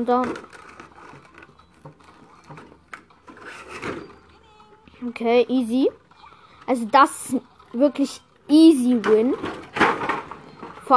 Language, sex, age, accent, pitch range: German, female, 20-39, German, 240-285 Hz